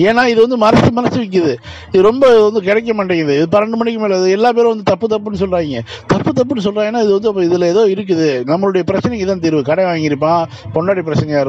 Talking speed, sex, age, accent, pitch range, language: 200 wpm, male, 50-69, native, 150-210 Hz, Tamil